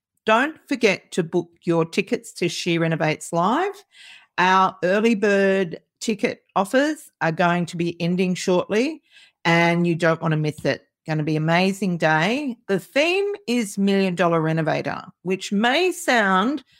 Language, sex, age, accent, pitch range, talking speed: English, female, 40-59, Australian, 165-220 Hz, 155 wpm